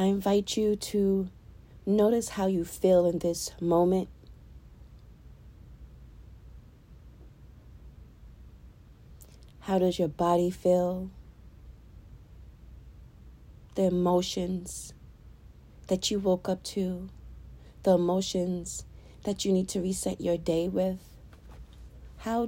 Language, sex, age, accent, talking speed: English, female, 40-59, American, 90 wpm